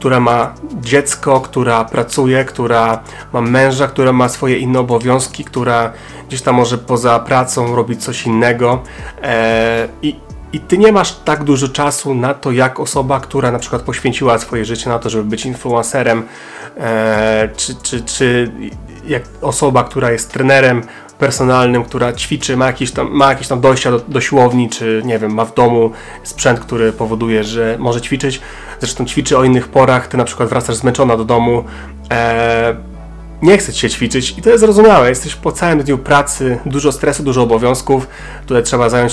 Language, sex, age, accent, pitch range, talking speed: Polish, male, 30-49, native, 120-140 Hz, 170 wpm